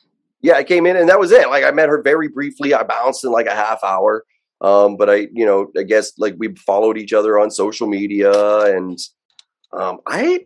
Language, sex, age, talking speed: English, male, 30-49, 225 wpm